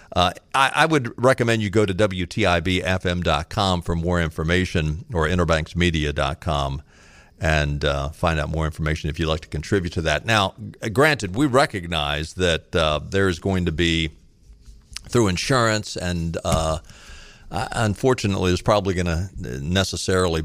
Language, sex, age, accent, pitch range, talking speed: English, male, 50-69, American, 80-95 Hz, 140 wpm